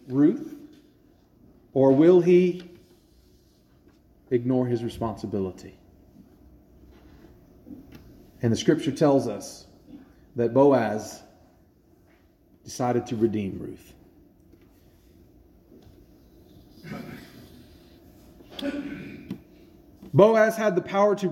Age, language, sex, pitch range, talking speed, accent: 40-59, English, male, 115-185 Hz, 65 wpm, American